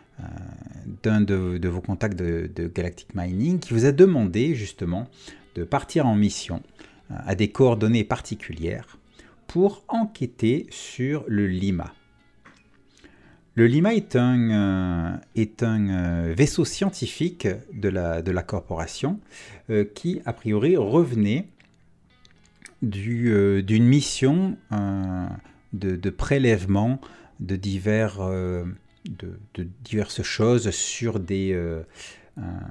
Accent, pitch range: French, 95-125 Hz